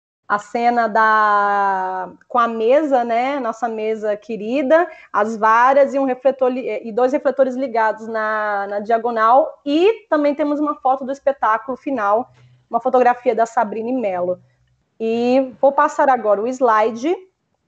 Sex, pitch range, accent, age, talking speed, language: female, 220-280 Hz, Brazilian, 20-39, 145 wpm, Portuguese